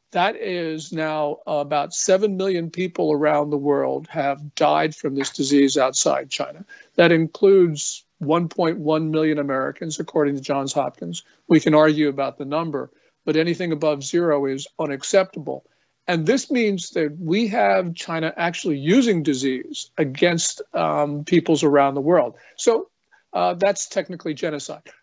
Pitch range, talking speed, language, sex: 150-195 Hz, 140 wpm, English, male